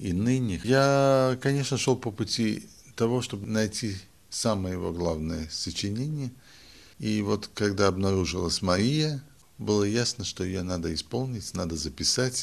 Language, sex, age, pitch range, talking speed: Russian, male, 50-69, 90-115 Hz, 130 wpm